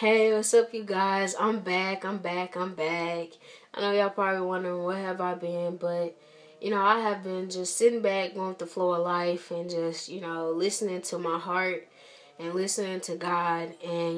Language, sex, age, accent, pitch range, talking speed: English, female, 10-29, American, 170-210 Hz, 205 wpm